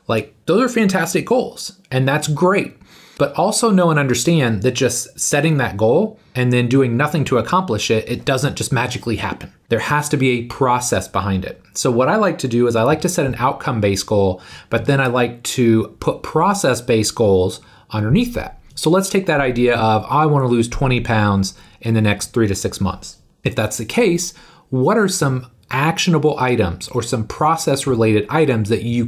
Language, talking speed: English, 195 wpm